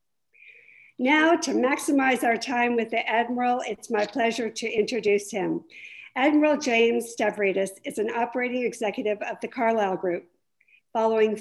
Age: 50-69